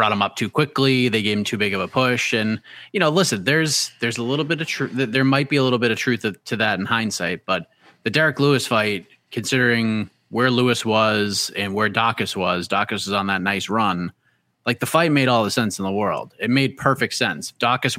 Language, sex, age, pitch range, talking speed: English, male, 30-49, 110-130 Hz, 235 wpm